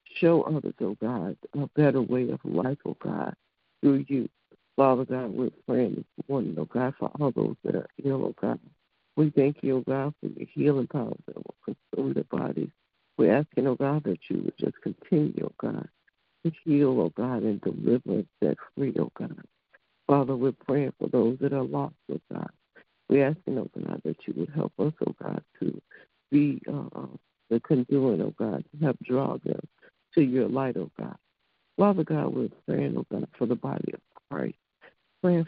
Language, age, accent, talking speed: English, 60-79, American, 185 wpm